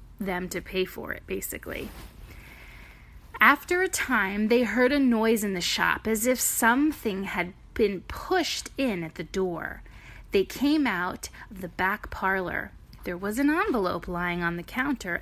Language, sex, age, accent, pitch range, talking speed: English, female, 30-49, American, 200-290 Hz, 160 wpm